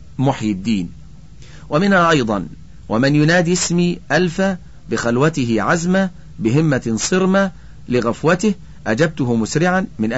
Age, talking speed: 40-59, 95 wpm